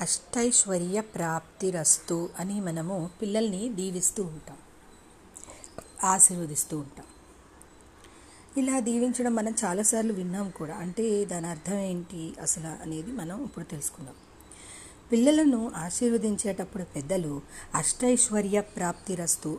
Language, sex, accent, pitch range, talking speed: Telugu, female, native, 165-230 Hz, 85 wpm